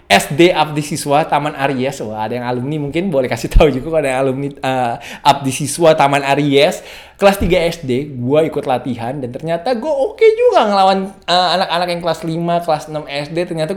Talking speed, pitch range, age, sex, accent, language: 185 wpm, 125-175 Hz, 20-39, male, native, Indonesian